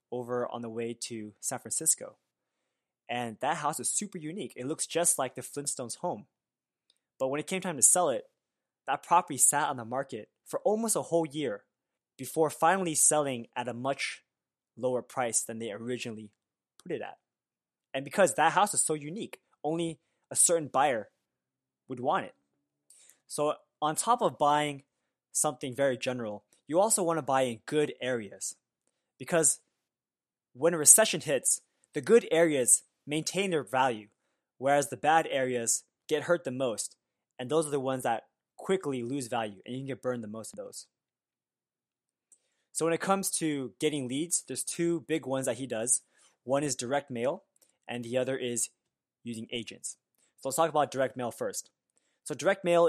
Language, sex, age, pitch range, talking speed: English, male, 20-39, 120-160 Hz, 175 wpm